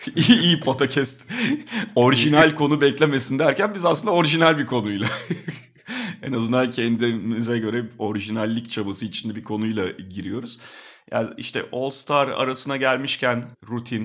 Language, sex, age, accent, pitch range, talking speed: Turkish, male, 40-59, native, 105-135 Hz, 120 wpm